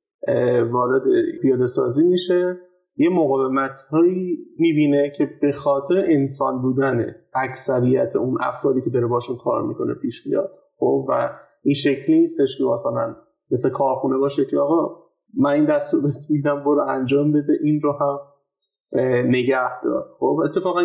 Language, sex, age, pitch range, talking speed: Persian, male, 30-49, 135-180 Hz, 140 wpm